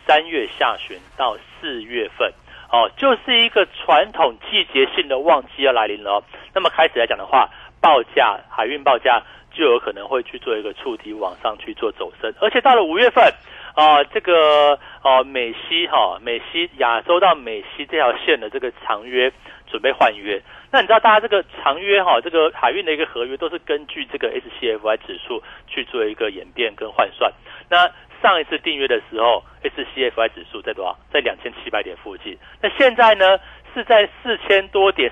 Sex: male